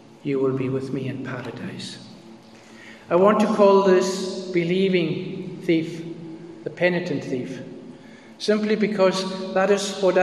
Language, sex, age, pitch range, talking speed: English, male, 60-79, 140-175 Hz, 130 wpm